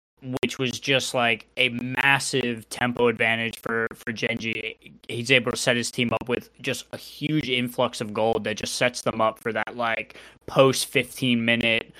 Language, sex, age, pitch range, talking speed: English, male, 20-39, 115-130 Hz, 170 wpm